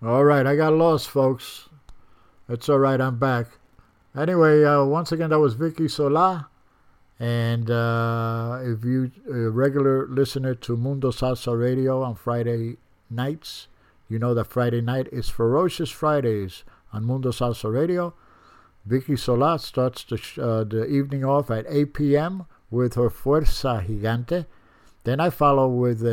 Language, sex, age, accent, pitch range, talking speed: English, male, 60-79, American, 110-140 Hz, 145 wpm